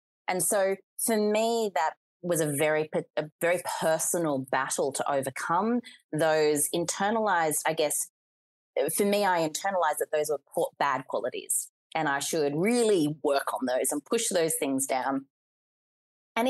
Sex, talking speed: female, 140 wpm